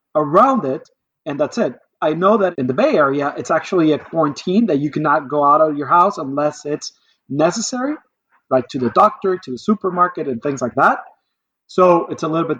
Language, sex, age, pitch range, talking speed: English, male, 30-49, 150-220 Hz, 205 wpm